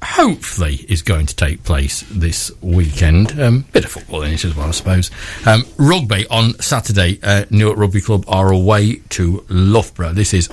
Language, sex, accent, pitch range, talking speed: English, male, British, 85-105 Hz, 180 wpm